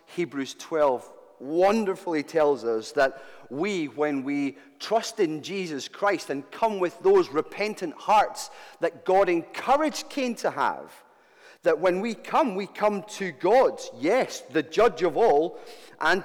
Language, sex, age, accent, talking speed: English, male, 40-59, British, 145 wpm